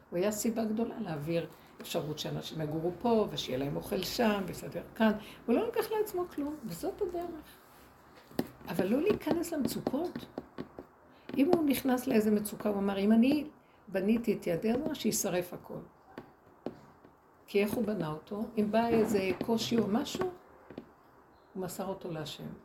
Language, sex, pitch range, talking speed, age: Hebrew, female, 185-245 Hz, 150 wpm, 60-79